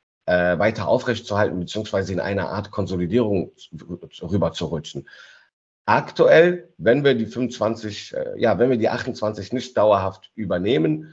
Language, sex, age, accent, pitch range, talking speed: German, male, 50-69, German, 90-115 Hz, 135 wpm